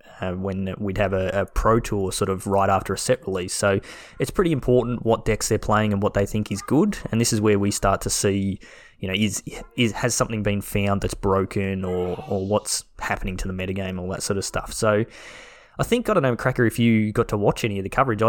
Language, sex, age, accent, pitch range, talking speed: English, male, 20-39, Australian, 100-115 Hz, 245 wpm